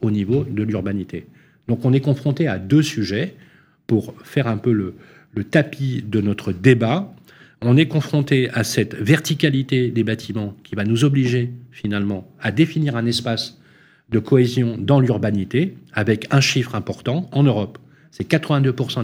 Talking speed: 160 wpm